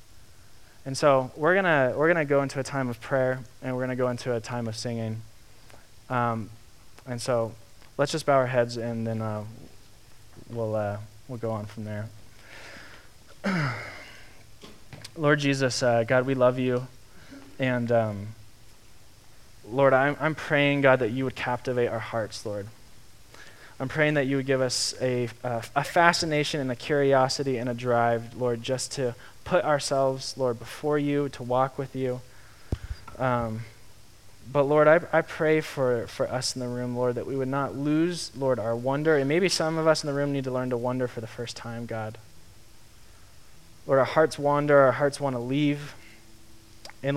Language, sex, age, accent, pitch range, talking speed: English, male, 20-39, American, 110-140 Hz, 175 wpm